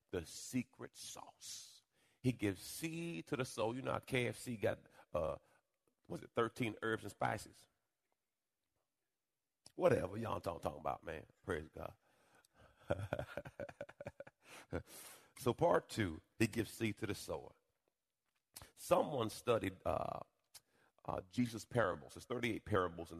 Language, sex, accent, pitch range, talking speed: English, male, American, 95-140 Hz, 125 wpm